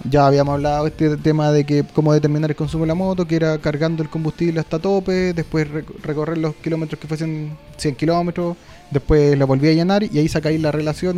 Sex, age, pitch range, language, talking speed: male, 20-39, 150-185 Hz, Spanish, 210 wpm